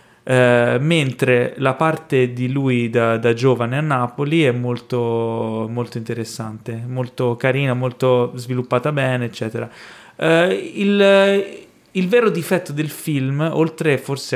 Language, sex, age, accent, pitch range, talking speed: Italian, male, 20-39, native, 115-140 Hz, 115 wpm